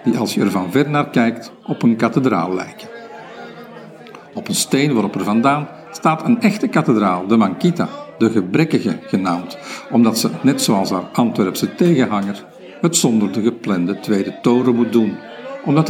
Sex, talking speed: male, 160 wpm